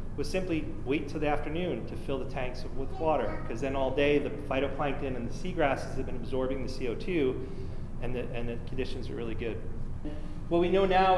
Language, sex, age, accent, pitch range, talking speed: English, male, 30-49, American, 125-155 Hz, 205 wpm